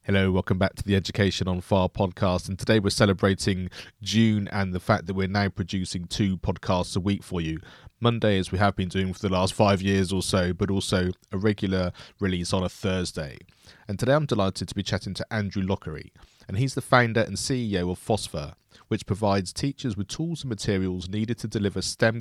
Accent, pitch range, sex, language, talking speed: British, 95-110 Hz, male, English, 210 wpm